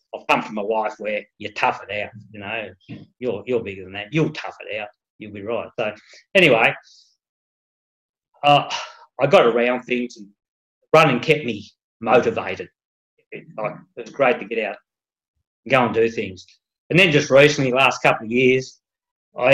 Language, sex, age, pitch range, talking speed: English, male, 40-59, 105-130 Hz, 180 wpm